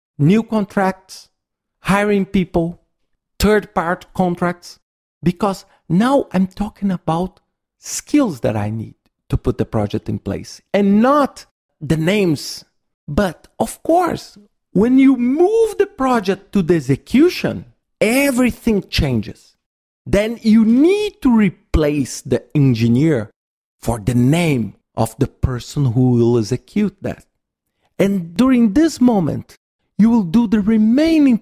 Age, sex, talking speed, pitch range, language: 50-69, male, 120 wpm, 135-215 Hz, English